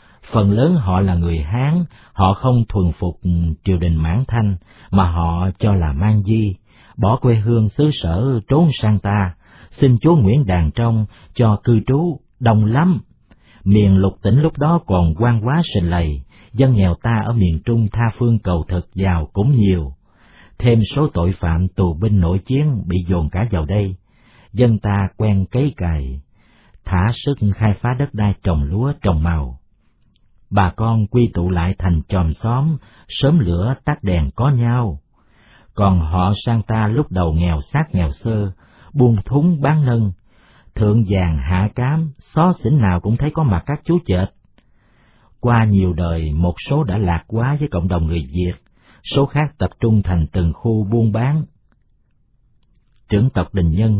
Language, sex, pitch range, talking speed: Vietnamese, male, 90-120 Hz, 175 wpm